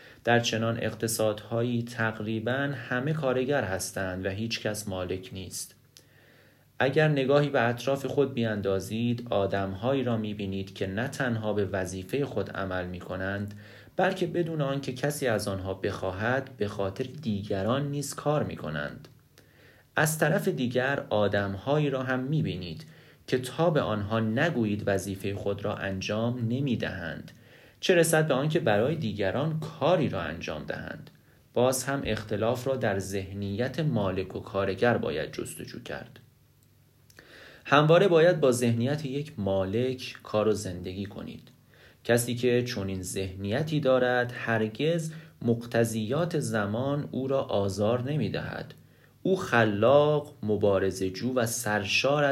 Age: 30-49